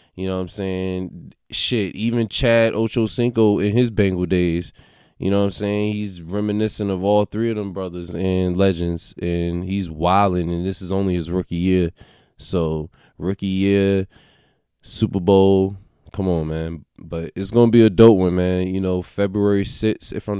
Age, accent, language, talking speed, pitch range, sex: 20-39, American, English, 175 wpm, 95-110 Hz, male